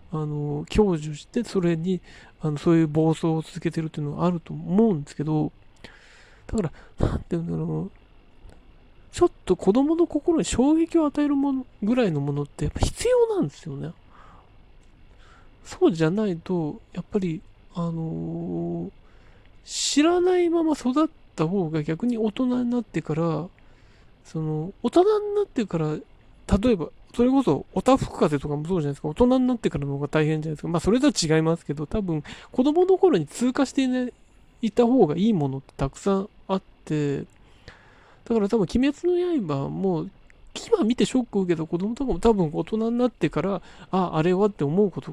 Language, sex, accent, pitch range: Japanese, male, native, 155-240 Hz